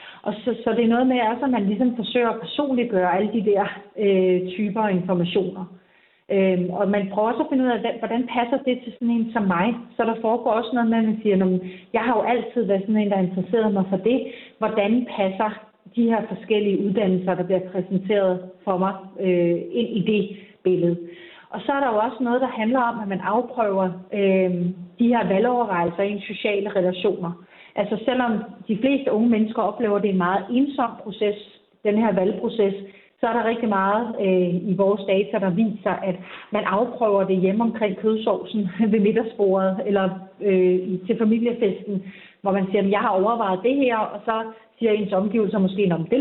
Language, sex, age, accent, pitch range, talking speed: Danish, female, 40-59, native, 190-230 Hz, 205 wpm